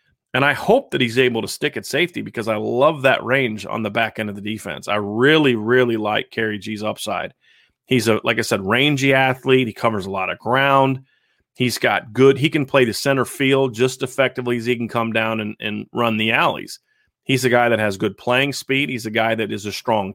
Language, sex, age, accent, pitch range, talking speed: English, male, 30-49, American, 115-135 Hz, 230 wpm